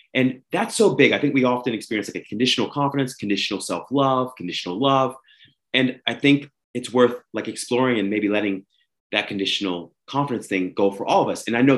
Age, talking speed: 30-49, 200 wpm